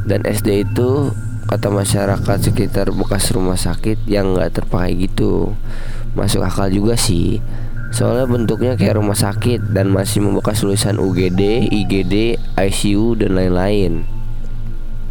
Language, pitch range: Indonesian, 100-115 Hz